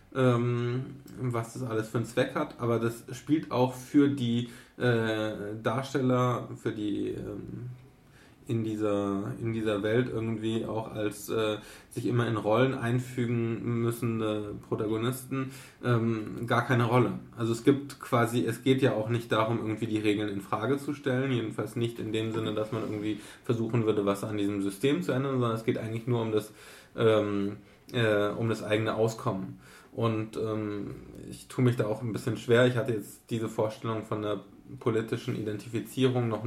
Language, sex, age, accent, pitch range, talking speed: German, male, 20-39, German, 110-125 Hz, 170 wpm